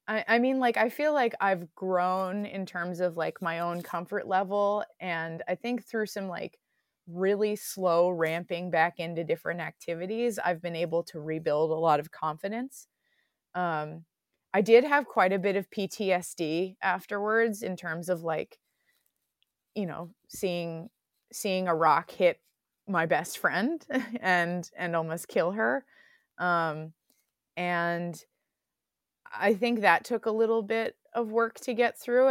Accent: American